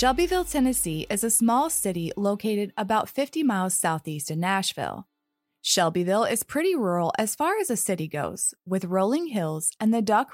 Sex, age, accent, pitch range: female, 20-39, American, 165-230 Hz